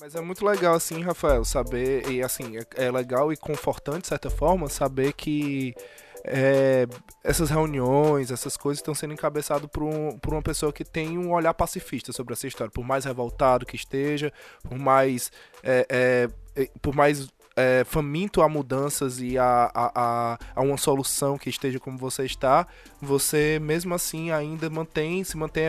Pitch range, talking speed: 130-160 Hz, 170 wpm